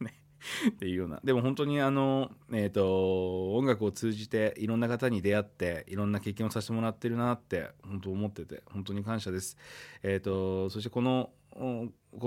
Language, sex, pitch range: Japanese, male, 90-130 Hz